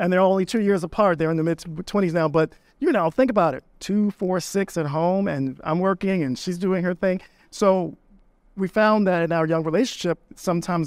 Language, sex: English, male